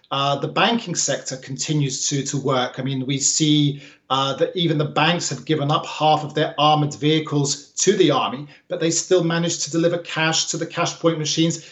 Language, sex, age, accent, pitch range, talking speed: English, male, 40-59, British, 150-175 Hz, 205 wpm